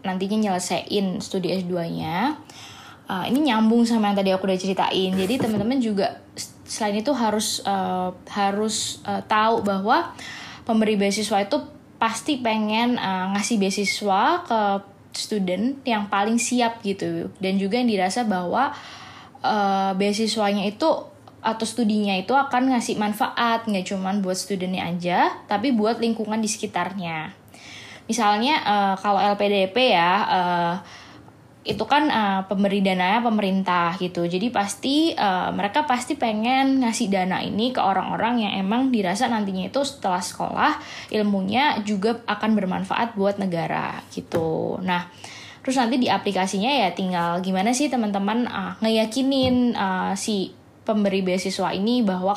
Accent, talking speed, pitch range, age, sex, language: native, 135 wpm, 190-230 Hz, 20-39, female, Indonesian